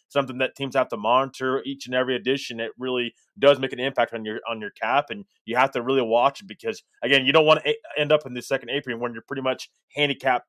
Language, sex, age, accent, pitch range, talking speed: English, male, 20-39, American, 115-135 Hz, 255 wpm